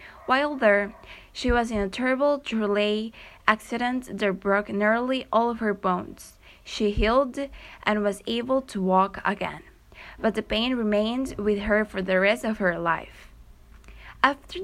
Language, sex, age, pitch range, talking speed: English, female, 20-39, 195-240 Hz, 150 wpm